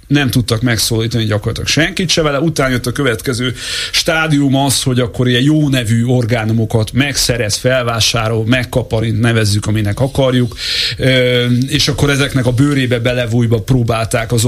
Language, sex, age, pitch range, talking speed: Hungarian, male, 30-49, 110-130 Hz, 135 wpm